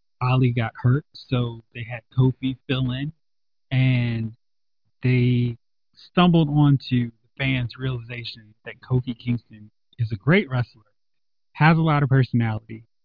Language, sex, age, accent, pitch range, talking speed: English, male, 20-39, American, 115-140 Hz, 130 wpm